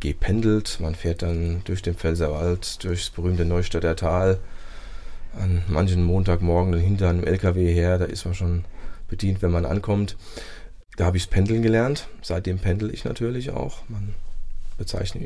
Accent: German